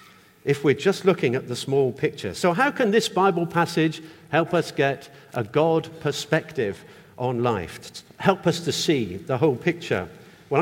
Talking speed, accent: 175 wpm, British